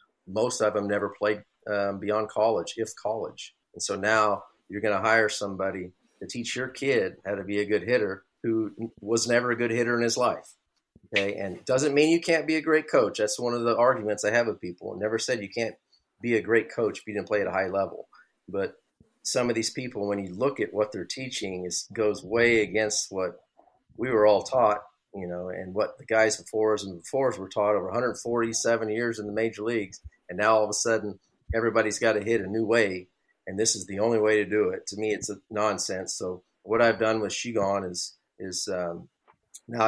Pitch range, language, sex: 105-115 Hz, English, male